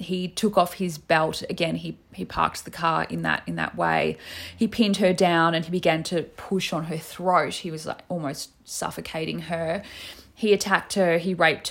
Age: 20-39